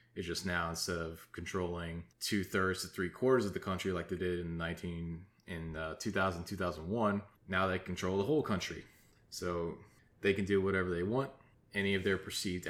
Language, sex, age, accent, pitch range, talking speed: English, male, 20-39, American, 90-105 Hz, 170 wpm